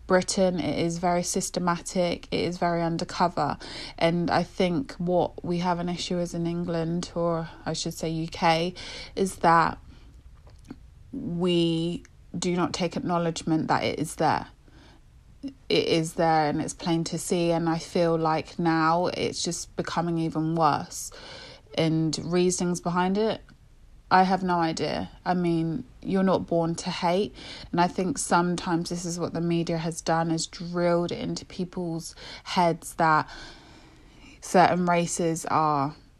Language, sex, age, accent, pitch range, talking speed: English, female, 20-39, British, 165-180 Hz, 150 wpm